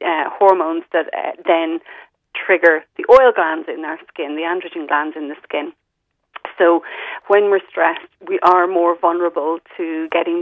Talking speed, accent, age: 160 wpm, Irish, 30-49